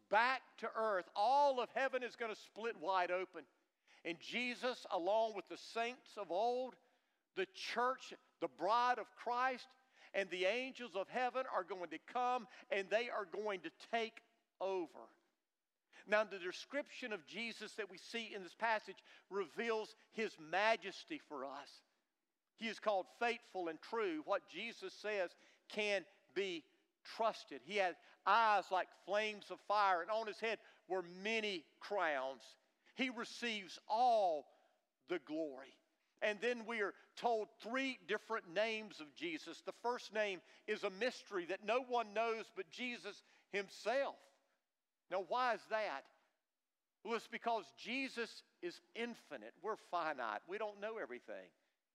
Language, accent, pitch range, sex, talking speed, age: English, American, 200-250 Hz, male, 150 wpm, 50-69